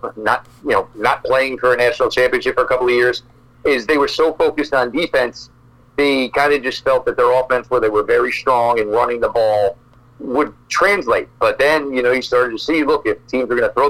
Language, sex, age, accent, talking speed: English, male, 40-59, American, 235 wpm